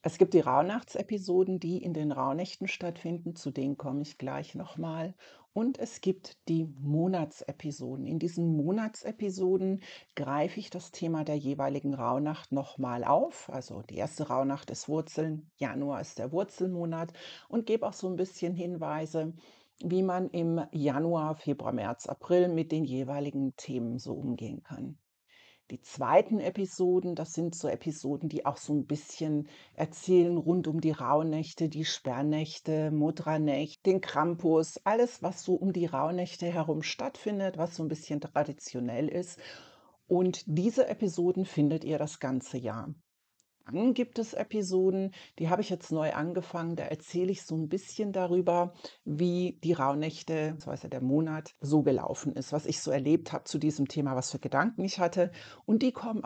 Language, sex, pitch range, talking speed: German, female, 145-180 Hz, 160 wpm